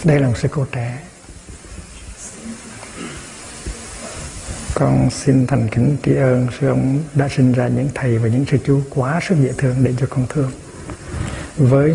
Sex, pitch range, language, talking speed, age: male, 120-140 Hz, Vietnamese, 160 wpm, 60-79